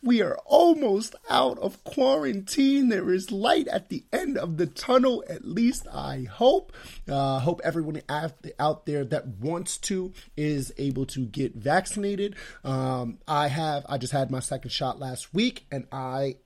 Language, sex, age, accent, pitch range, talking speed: English, male, 30-49, American, 130-160 Hz, 170 wpm